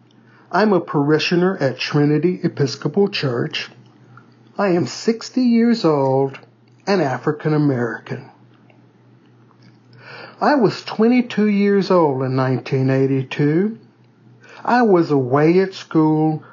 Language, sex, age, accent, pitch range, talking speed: English, male, 60-79, American, 135-190 Hz, 100 wpm